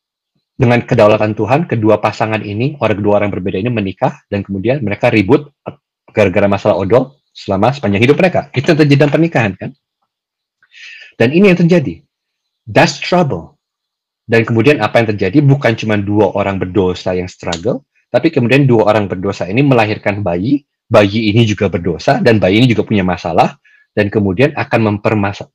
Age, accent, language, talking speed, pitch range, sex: 30-49, native, Indonesian, 160 wpm, 105-140 Hz, male